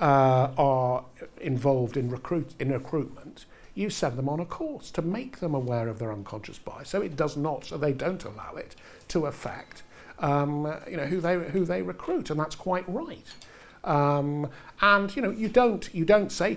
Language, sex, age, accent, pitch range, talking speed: English, male, 50-69, British, 115-175 Hz, 190 wpm